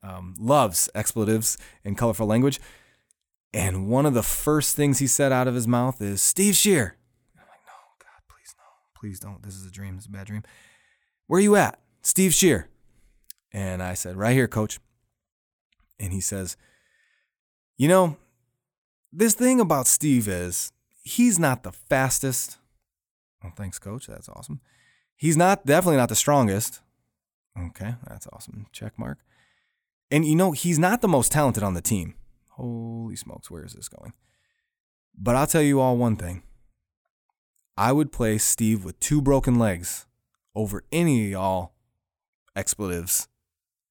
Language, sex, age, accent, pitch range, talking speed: English, male, 20-39, American, 100-140 Hz, 160 wpm